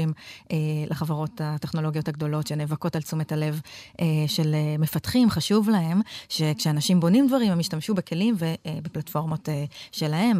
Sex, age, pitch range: female, 30-49, 155-190 Hz